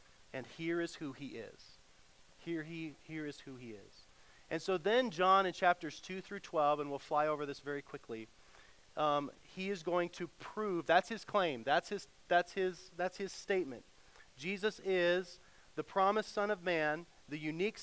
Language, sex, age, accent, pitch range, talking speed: English, male, 40-59, American, 140-185 Hz, 180 wpm